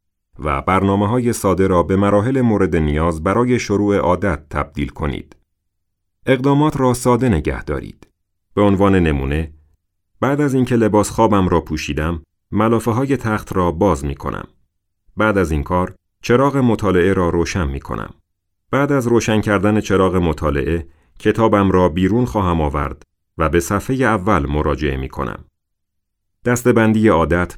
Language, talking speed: Persian, 145 wpm